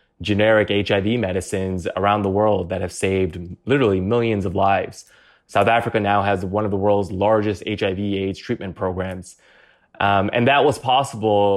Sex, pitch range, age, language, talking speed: male, 100-115 Hz, 20-39, English, 160 wpm